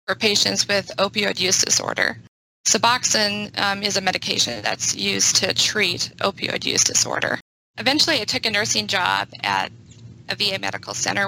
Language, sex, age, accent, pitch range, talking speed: English, female, 20-39, American, 120-205 Hz, 155 wpm